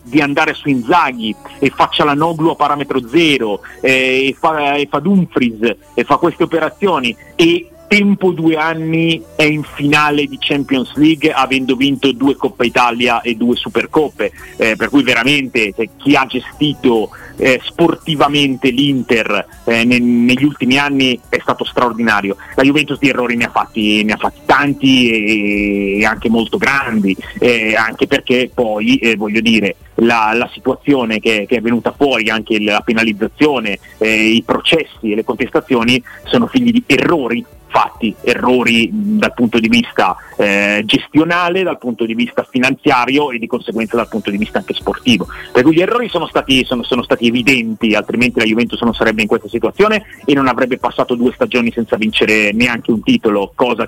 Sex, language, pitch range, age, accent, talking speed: male, Italian, 115-145 Hz, 40-59, native, 170 wpm